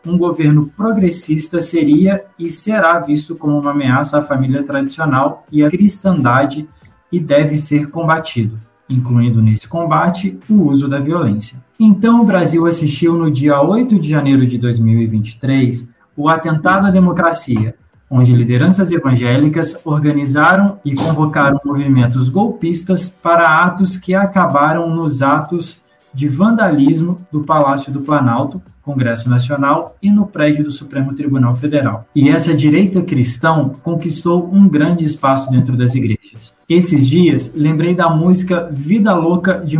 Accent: Brazilian